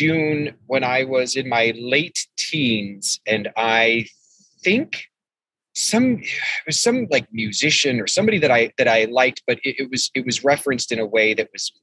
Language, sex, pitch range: English, male, 110-145 Hz